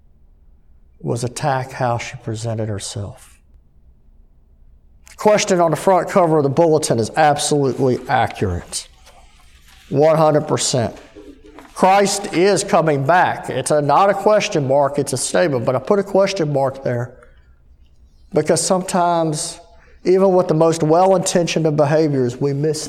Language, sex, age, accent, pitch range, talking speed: English, male, 50-69, American, 130-200 Hz, 130 wpm